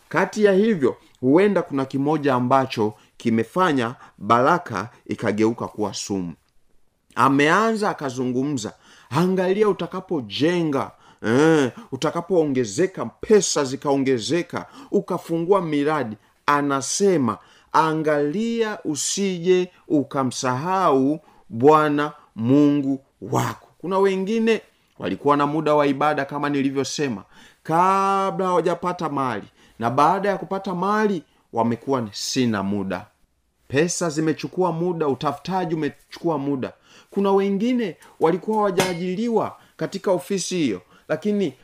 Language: Swahili